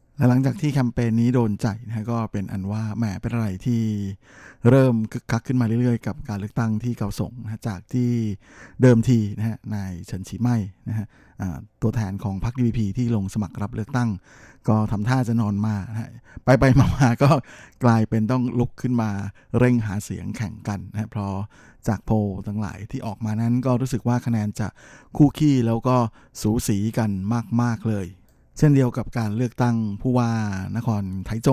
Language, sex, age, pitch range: Thai, male, 20-39, 105-120 Hz